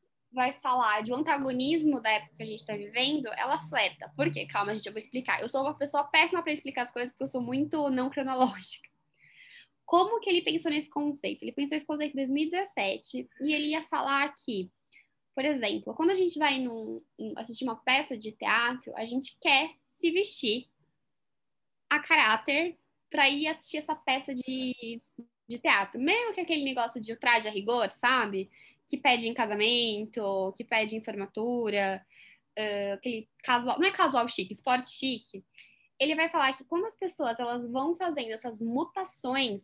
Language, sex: English, female